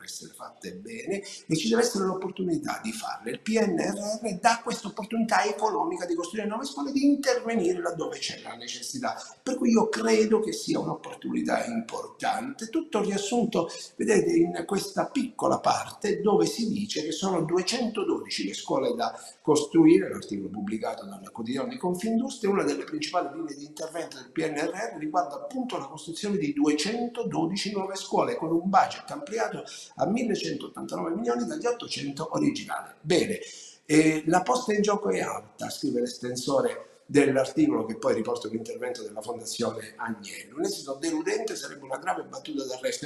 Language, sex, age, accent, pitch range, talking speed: Italian, male, 50-69, native, 180-265 Hz, 150 wpm